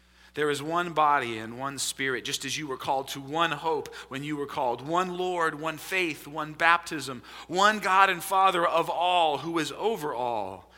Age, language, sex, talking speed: 40-59, English, male, 195 wpm